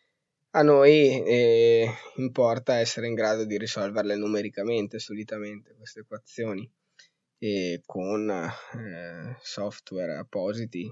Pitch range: 105-130 Hz